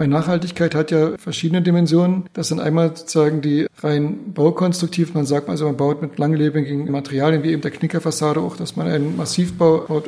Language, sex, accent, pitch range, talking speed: German, male, German, 155-175 Hz, 180 wpm